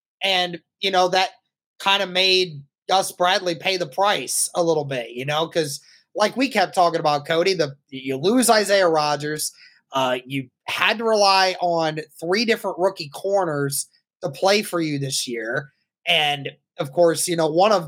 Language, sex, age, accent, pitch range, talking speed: English, male, 20-39, American, 165-195 Hz, 175 wpm